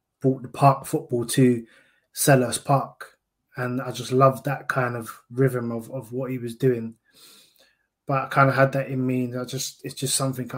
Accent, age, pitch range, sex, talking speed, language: British, 20-39, 120-130 Hz, male, 200 wpm, English